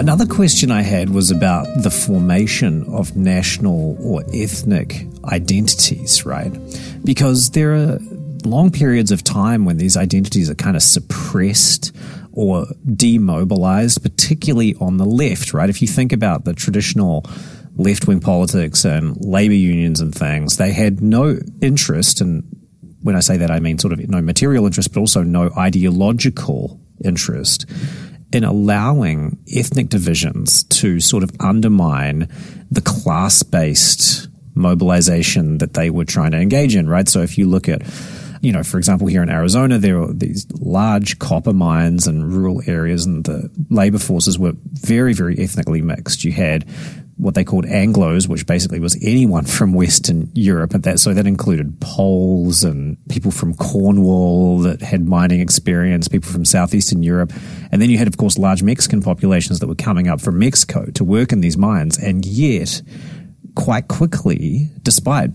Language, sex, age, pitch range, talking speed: English, male, 30-49, 90-135 Hz, 160 wpm